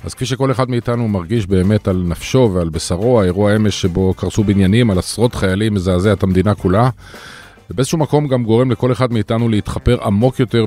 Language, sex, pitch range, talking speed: Hebrew, male, 95-120 Hz, 190 wpm